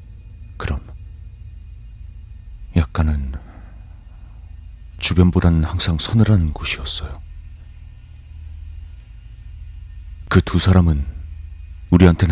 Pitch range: 75-90 Hz